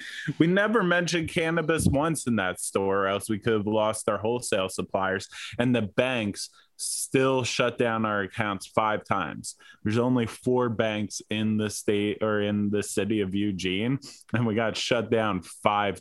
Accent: American